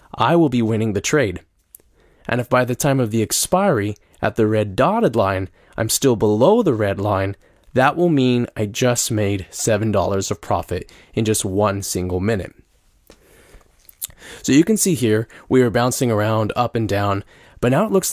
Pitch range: 105-140 Hz